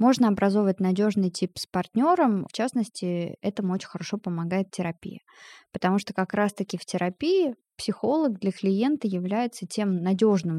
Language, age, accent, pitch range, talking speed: Russian, 20-39, native, 185-230 Hz, 140 wpm